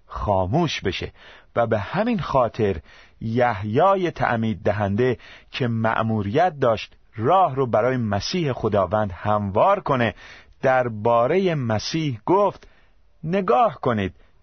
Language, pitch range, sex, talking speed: Persian, 100-135 Hz, male, 105 wpm